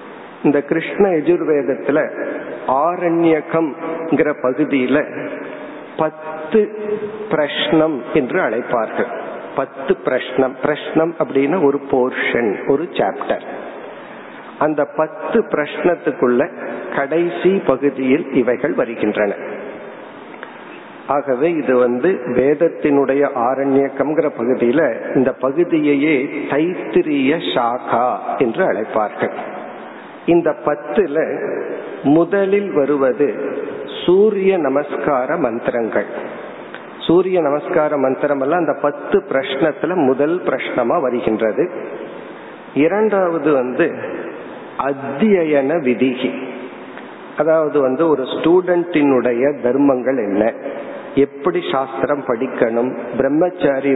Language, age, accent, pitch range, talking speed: Tamil, 50-69, native, 135-175 Hz, 55 wpm